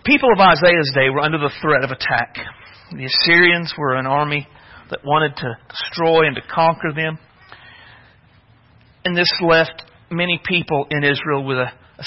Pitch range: 140-170 Hz